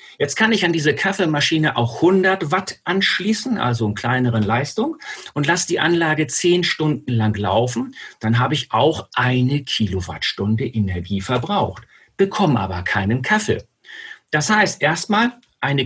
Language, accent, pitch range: German, German, 115-175 Hz